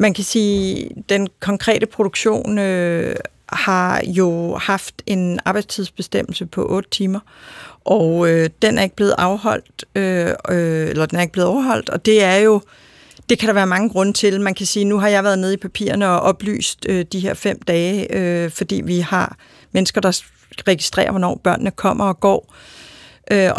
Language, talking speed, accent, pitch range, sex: Danish, 180 wpm, native, 180-205 Hz, female